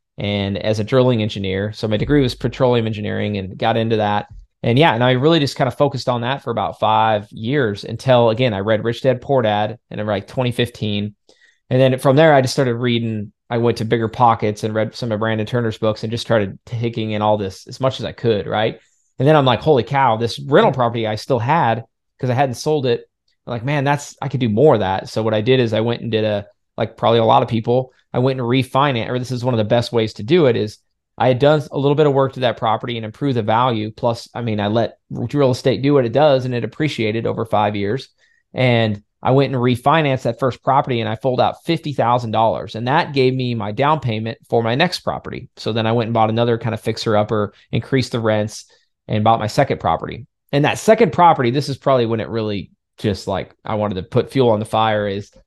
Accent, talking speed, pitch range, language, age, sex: American, 245 wpm, 110-130 Hz, English, 20-39, male